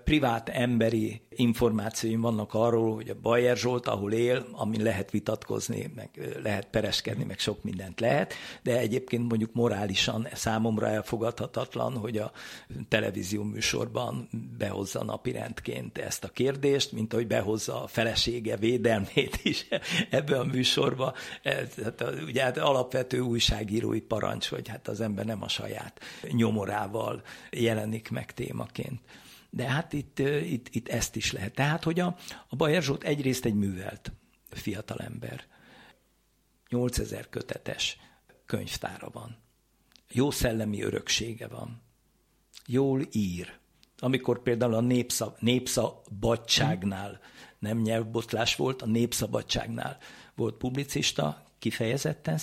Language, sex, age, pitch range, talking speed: Hungarian, male, 60-79, 110-125 Hz, 120 wpm